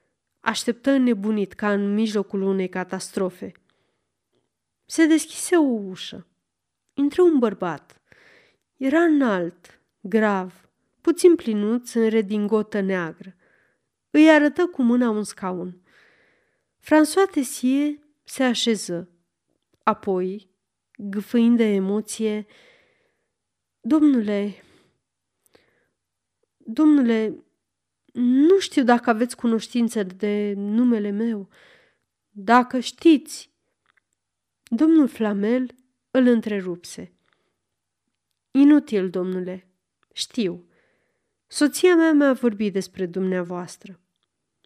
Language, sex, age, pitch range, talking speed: Romanian, female, 20-39, 200-275 Hz, 85 wpm